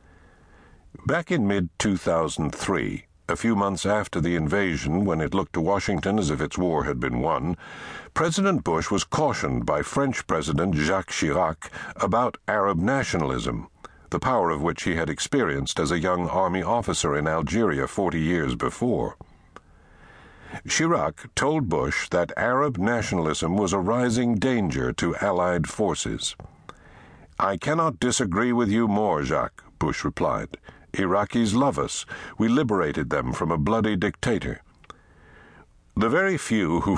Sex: male